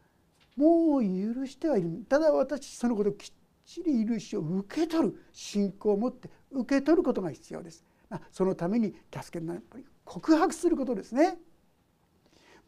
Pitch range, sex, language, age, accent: 195-300 Hz, male, Japanese, 60-79, native